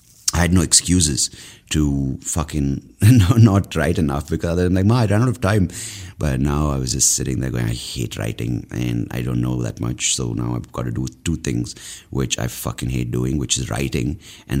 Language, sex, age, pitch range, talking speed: English, male, 30-49, 75-105 Hz, 215 wpm